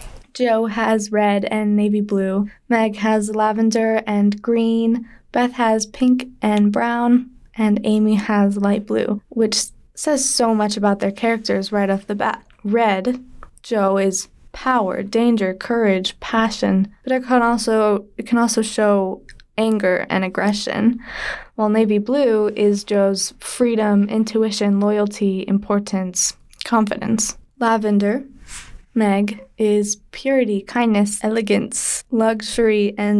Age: 10-29